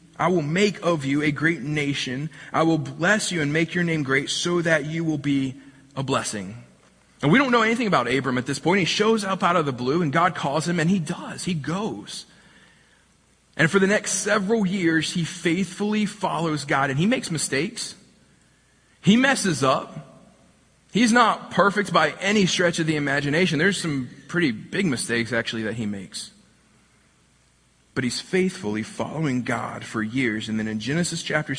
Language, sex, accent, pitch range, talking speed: English, male, American, 125-165 Hz, 185 wpm